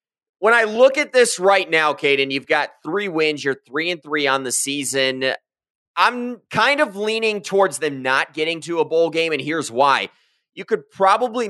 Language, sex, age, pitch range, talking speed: English, male, 20-39, 120-165 Hz, 195 wpm